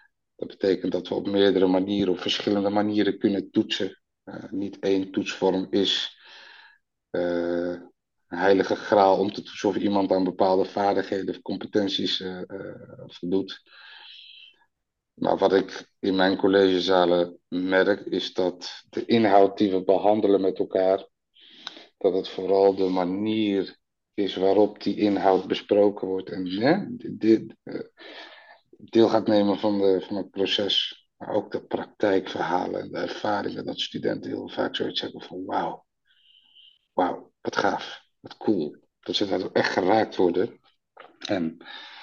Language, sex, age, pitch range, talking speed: Dutch, male, 50-69, 95-100 Hz, 145 wpm